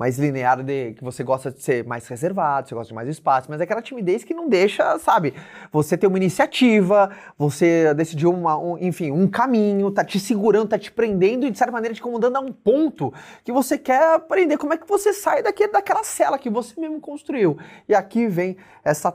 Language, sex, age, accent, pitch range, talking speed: Portuguese, male, 20-39, Brazilian, 130-220 Hz, 205 wpm